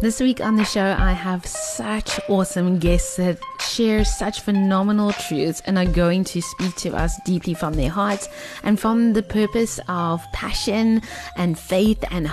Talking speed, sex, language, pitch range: 170 wpm, female, English, 175-215 Hz